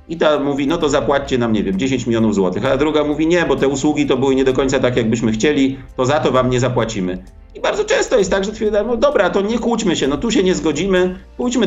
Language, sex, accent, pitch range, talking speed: Polish, male, native, 120-165 Hz, 265 wpm